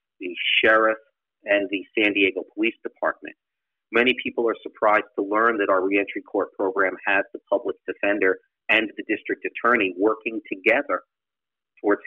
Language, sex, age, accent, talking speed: English, male, 40-59, American, 150 wpm